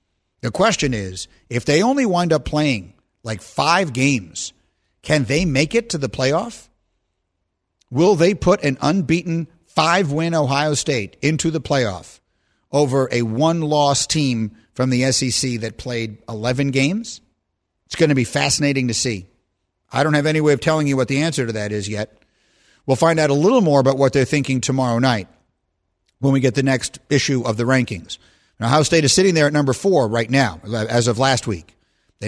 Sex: male